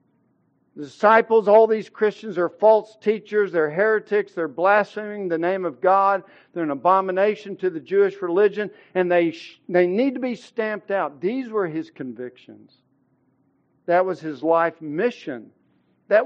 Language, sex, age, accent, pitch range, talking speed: English, male, 50-69, American, 150-220 Hz, 150 wpm